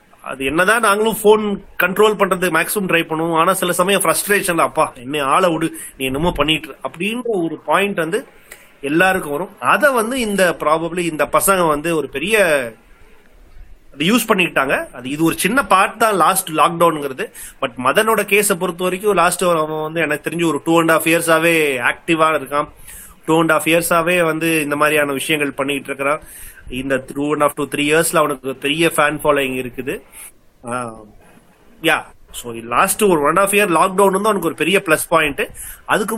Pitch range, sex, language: 145-190 Hz, male, Tamil